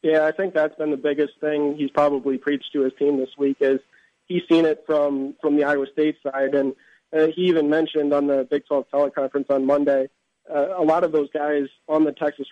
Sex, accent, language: male, American, English